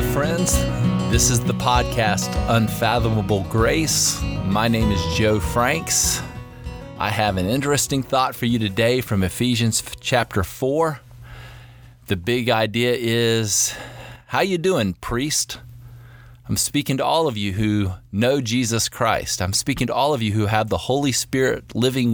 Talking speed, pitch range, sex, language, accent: 145 wpm, 105-125 Hz, male, English, American